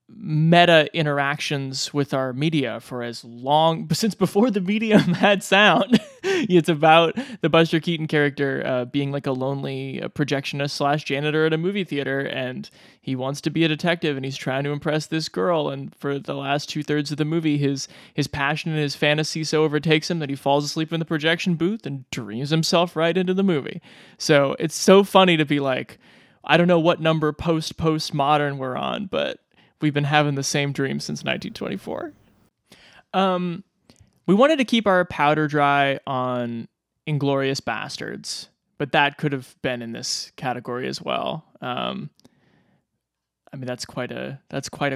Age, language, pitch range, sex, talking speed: 20-39, English, 135-165 Hz, male, 180 wpm